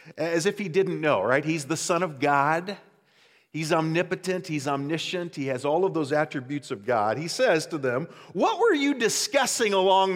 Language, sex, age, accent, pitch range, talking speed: English, male, 50-69, American, 170-245 Hz, 190 wpm